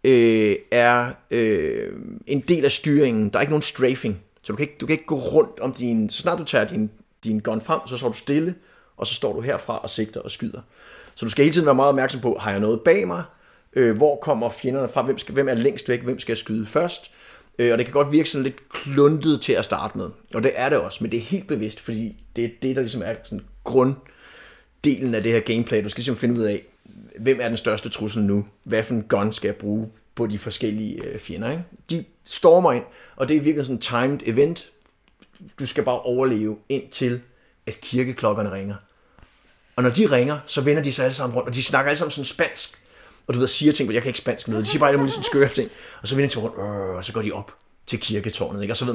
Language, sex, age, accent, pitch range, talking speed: Danish, male, 30-49, native, 110-140 Hz, 250 wpm